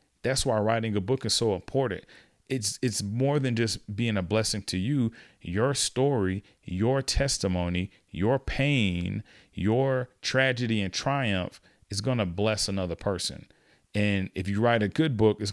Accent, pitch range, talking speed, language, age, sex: American, 95-120 Hz, 160 wpm, English, 40-59, male